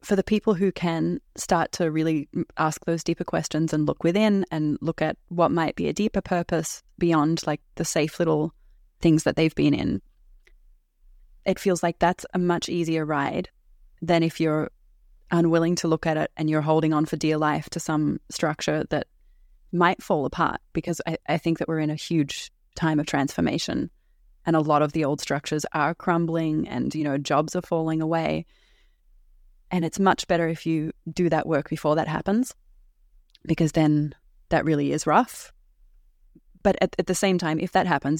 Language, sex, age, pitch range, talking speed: English, female, 20-39, 155-170 Hz, 185 wpm